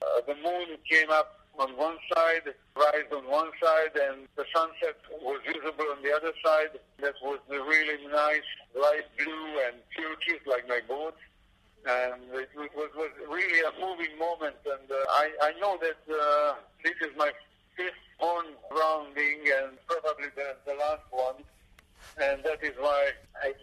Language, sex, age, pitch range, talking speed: Hungarian, male, 50-69, 140-160 Hz, 170 wpm